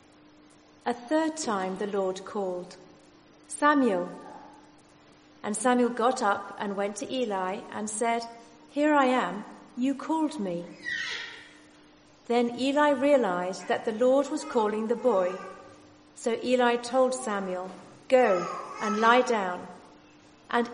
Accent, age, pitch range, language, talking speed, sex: British, 40-59, 190-270 Hz, English, 120 wpm, female